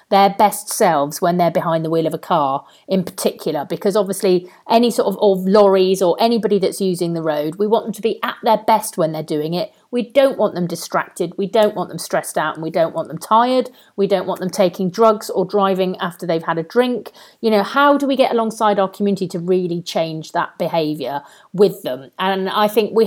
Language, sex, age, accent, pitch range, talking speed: English, female, 40-59, British, 170-220 Hz, 225 wpm